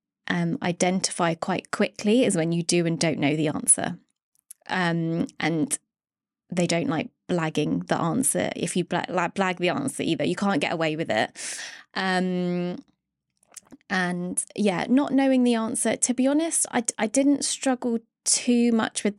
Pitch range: 170-210 Hz